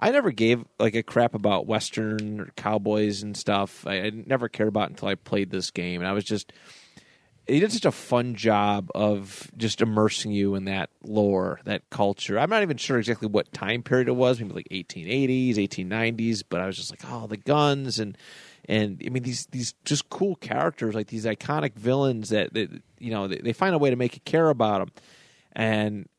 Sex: male